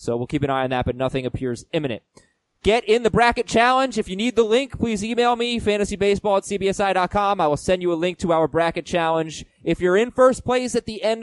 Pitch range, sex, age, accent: 140-190 Hz, male, 20-39, American